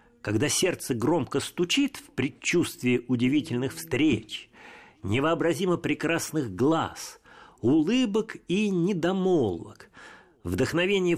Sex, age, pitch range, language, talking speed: male, 40-59, 120-185 Hz, Russian, 80 wpm